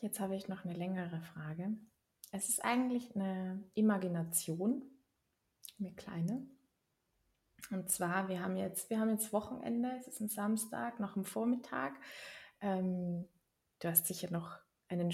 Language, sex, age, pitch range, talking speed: German, female, 20-39, 175-215 Hz, 140 wpm